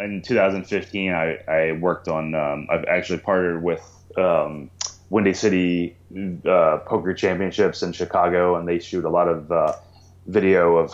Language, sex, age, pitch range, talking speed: English, male, 20-39, 85-90 Hz, 155 wpm